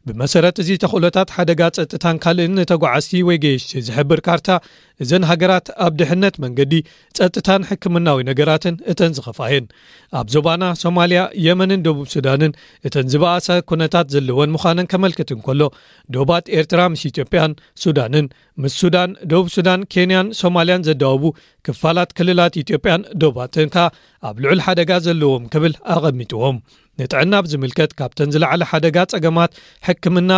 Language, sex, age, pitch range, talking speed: Amharic, male, 40-59, 145-175 Hz, 125 wpm